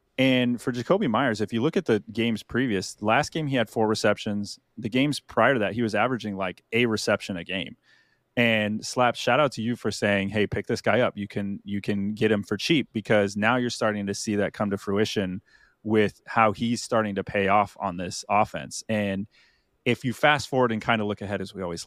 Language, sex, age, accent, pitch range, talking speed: English, male, 30-49, American, 100-120 Hz, 230 wpm